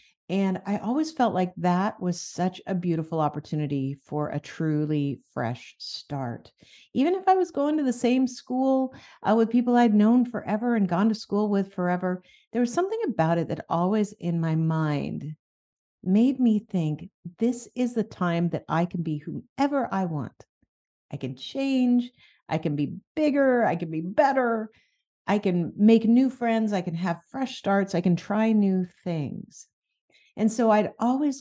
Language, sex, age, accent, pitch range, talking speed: English, female, 50-69, American, 155-220 Hz, 175 wpm